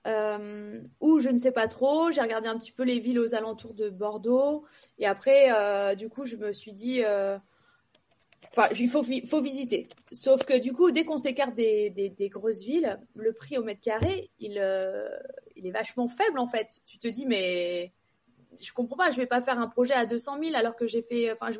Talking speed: 225 wpm